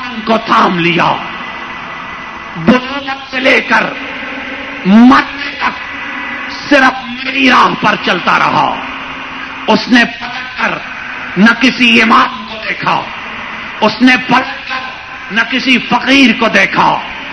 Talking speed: 115 wpm